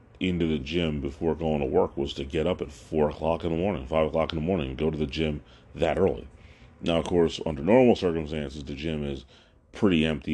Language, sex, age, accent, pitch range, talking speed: English, male, 40-59, American, 75-85 Hz, 225 wpm